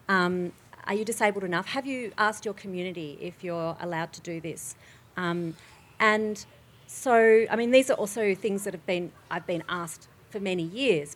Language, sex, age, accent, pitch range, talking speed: English, female, 40-59, Australian, 165-215 Hz, 185 wpm